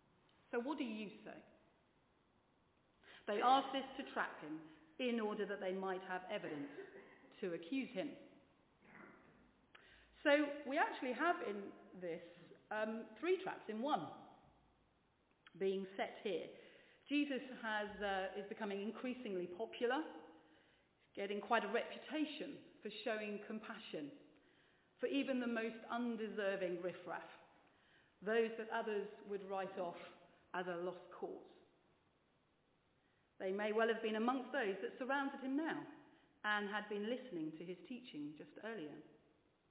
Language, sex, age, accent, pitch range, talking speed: English, female, 40-59, British, 185-265 Hz, 130 wpm